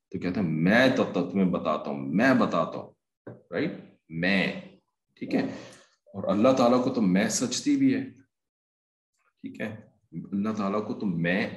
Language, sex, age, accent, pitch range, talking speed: English, male, 40-59, Indian, 95-145 Hz, 150 wpm